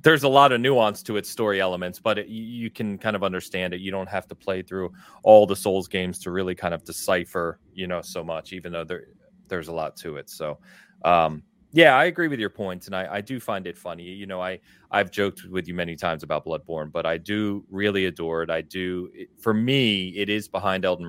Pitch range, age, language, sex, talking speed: 85-105 Hz, 30-49, English, male, 235 wpm